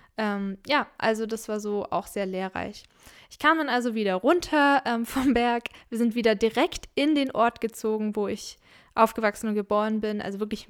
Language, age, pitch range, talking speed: German, 10-29, 210-250 Hz, 190 wpm